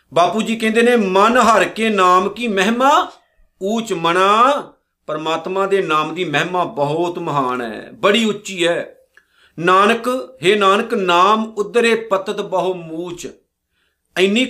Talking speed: 130 wpm